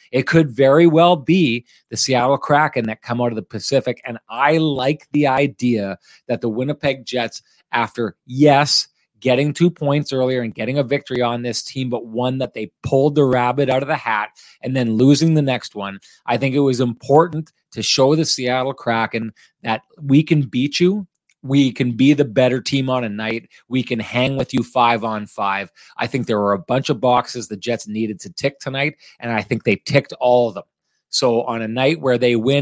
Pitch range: 115-140 Hz